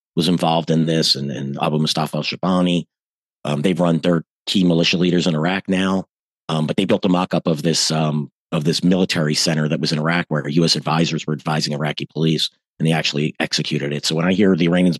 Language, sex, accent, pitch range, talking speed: English, male, American, 75-90 Hz, 220 wpm